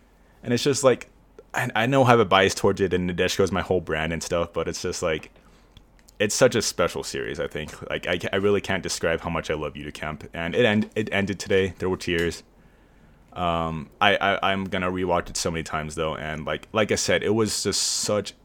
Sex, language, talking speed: male, English, 235 wpm